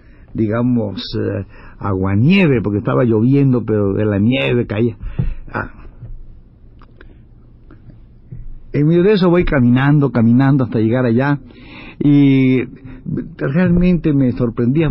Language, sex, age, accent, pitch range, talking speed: Spanish, male, 60-79, Mexican, 115-145 Hz, 105 wpm